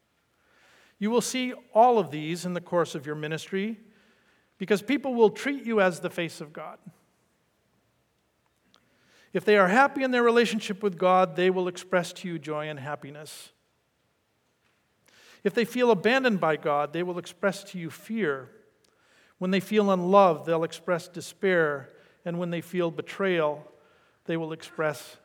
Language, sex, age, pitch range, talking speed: English, male, 50-69, 160-200 Hz, 155 wpm